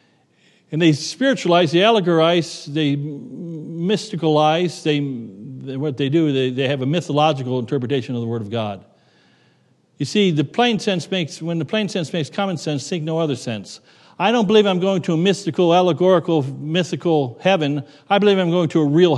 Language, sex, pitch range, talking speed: English, male, 150-180 Hz, 180 wpm